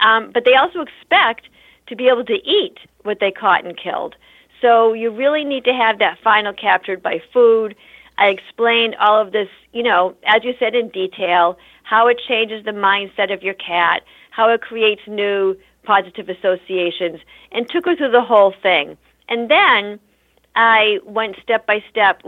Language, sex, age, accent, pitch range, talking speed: English, female, 50-69, American, 185-225 Hz, 170 wpm